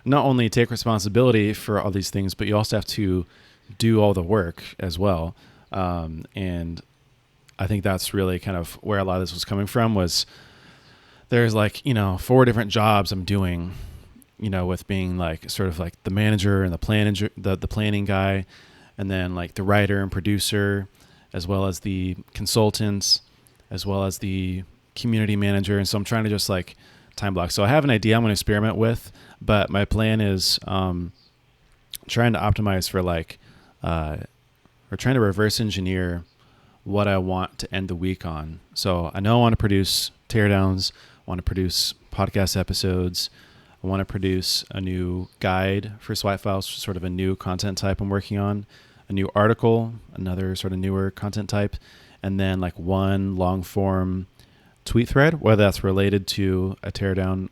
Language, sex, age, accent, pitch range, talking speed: English, male, 30-49, American, 95-105 Hz, 185 wpm